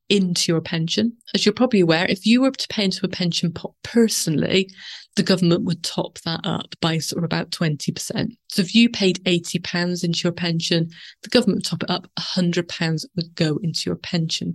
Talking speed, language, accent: 200 wpm, English, British